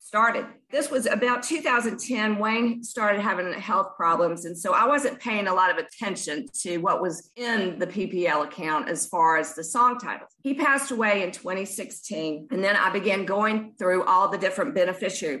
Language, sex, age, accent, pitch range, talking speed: English, female, 50-69, American, 180-230 Hz, 185 wpm